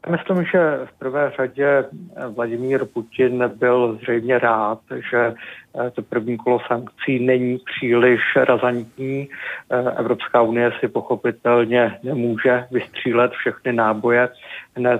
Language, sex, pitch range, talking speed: Czech, male, 120-130 Hz, 110 wpm